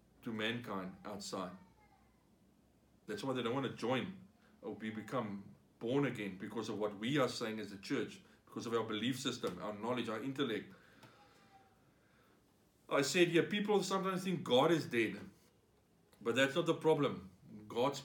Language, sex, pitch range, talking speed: English, male, 110-160 Hz, 165 wpm